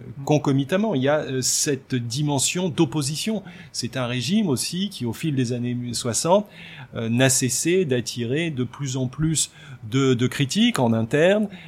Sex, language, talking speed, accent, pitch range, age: male, French, 150 wpm, French, 120-155 Hz, 30-49